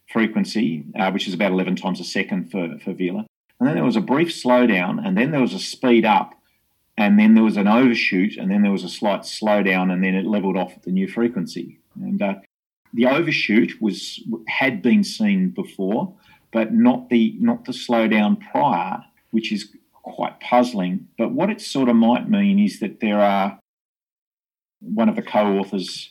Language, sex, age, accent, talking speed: English, male, 40-59, Australian, 190 wpm